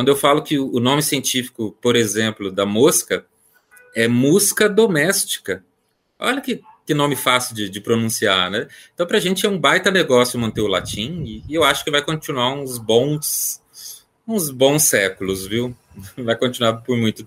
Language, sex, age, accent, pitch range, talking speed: Portuguese, male, 30-49, Brazilian, 110-155 Hz, 175 wpm